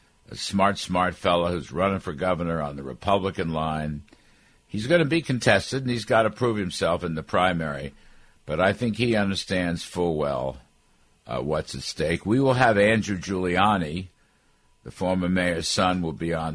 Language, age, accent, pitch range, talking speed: English, 60-79, American, 80-110 Hz, 180 wpm